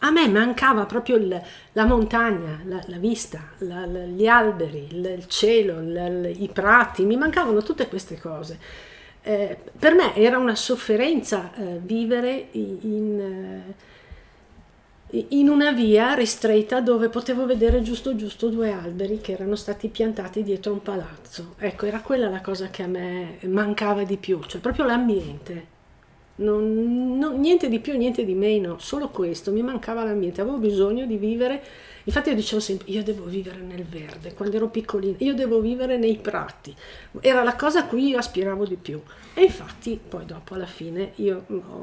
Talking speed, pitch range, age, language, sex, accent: 160 wpm, 185-230 Hz, 50-69, Italian, female, native